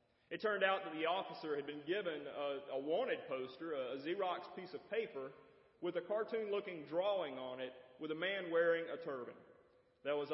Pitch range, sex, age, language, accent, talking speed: 160-245 Hz, male, 30-49, English, American, 190 wpm